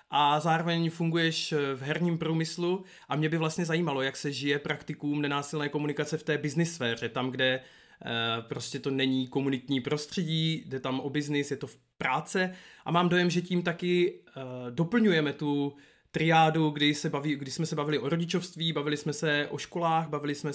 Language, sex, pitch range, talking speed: Czech, male, 140-170 Hz, 175 wpm